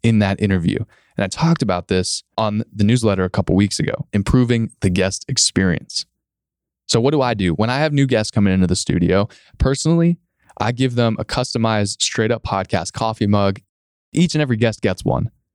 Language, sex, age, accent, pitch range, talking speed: English, male, 20-39, American, 95-115 Hz, 195 wpm